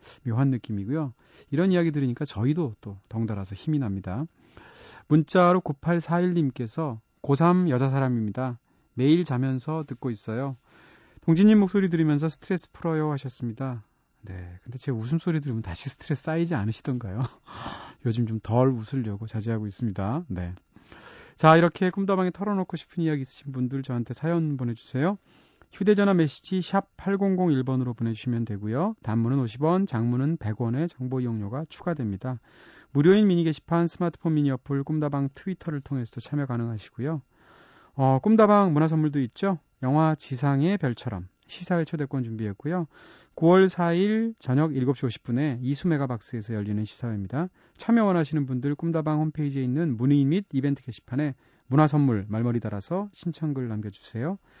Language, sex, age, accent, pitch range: Korean, male, 30-49, native, 120-165 Hz